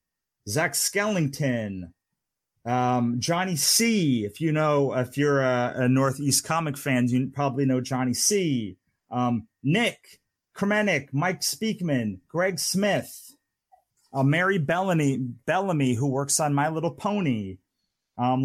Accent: American